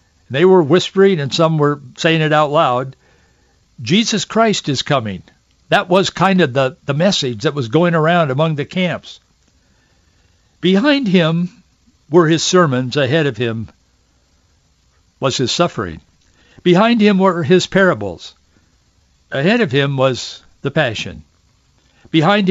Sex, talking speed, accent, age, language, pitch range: male, 135 wpm, American, 60-79, English, 125-180 Hz